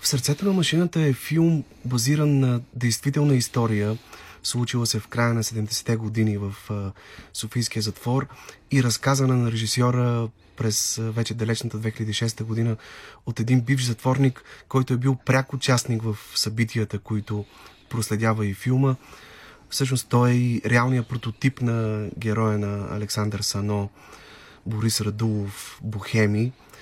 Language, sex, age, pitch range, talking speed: Bulgarian, male, 30-49, 105-130 Hz, 130 wpm